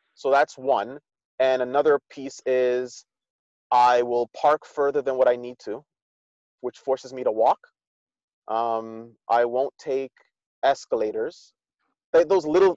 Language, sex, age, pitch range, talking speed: English, male, 30-49, 120-160 Hz, 135 wpm